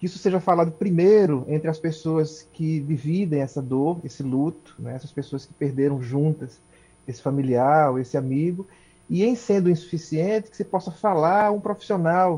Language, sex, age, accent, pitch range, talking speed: Portuguese, male, 30-49, Brazilian, 145-185 Hz, 165 wpm